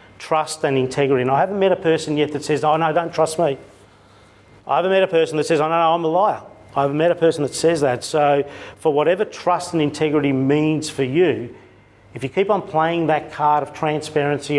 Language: English